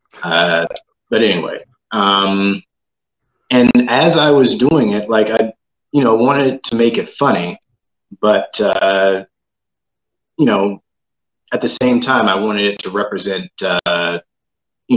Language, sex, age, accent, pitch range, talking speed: English, male, 30-49, American, 95-120 Hz, 135 wpm